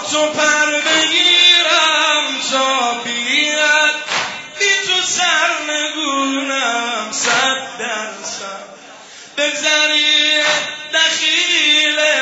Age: 20-39